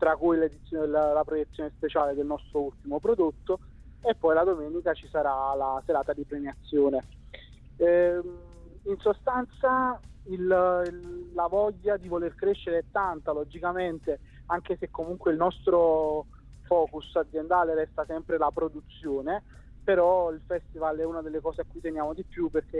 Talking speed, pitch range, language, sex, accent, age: 150 wpm, 155-175 Hz, Italian, male, native, 30-49